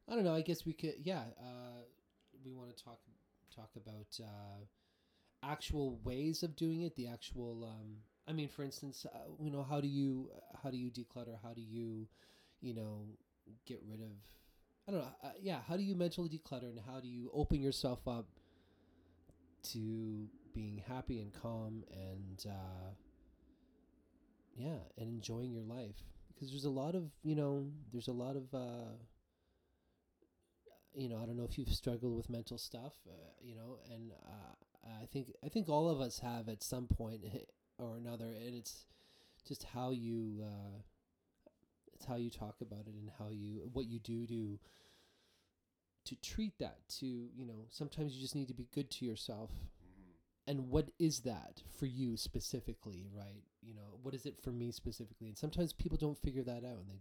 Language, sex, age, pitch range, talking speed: English, male, 20-39, 105-135 Hz, 185 wpm